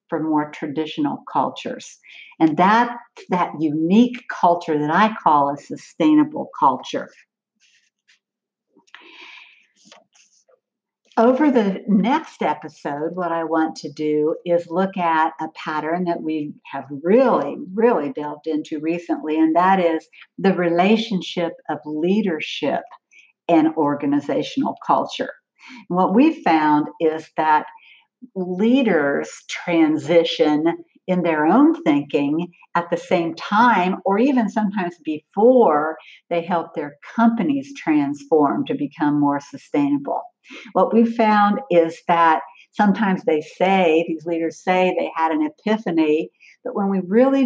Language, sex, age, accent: English, female, 60-79, American